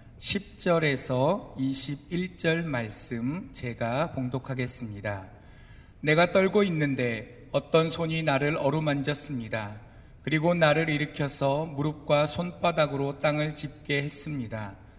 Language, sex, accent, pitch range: Korean, male, native, 120-160 Hz